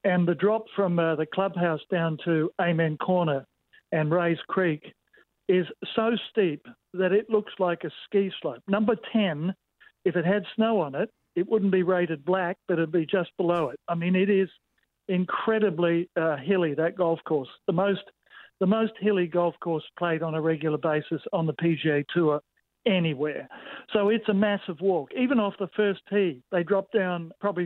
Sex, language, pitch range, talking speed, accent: male, English, 165-195 Hz, 180 wpm, Australian